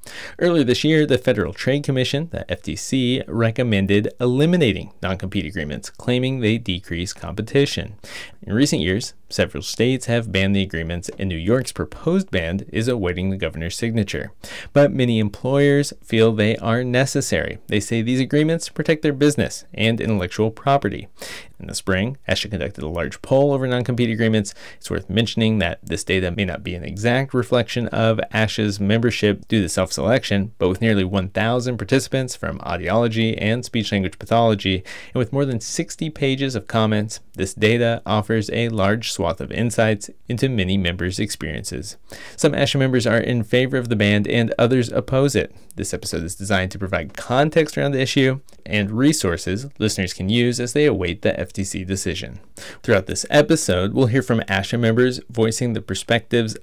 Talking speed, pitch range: 165 wpm, 100-125 Hz